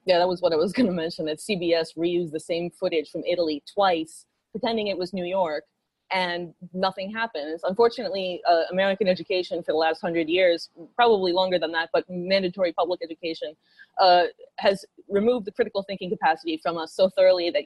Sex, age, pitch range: female, 20-39, 170-220 Hz